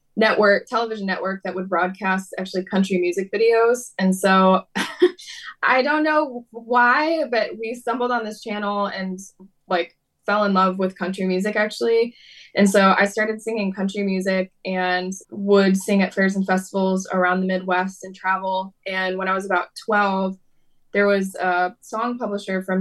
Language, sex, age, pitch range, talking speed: English, female, 20-39, 185-200 Hz, 165 wpm